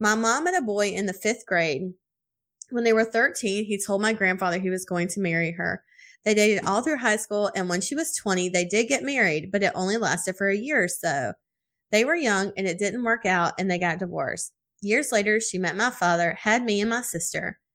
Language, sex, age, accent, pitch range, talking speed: English, female, 20-39, American, 185-225 Hz, 235 wpm